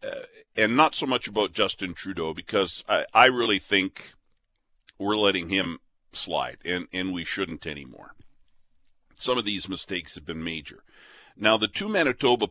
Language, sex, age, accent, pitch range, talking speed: English, male, 50-69, American, 90-125 Hz, 160 wpm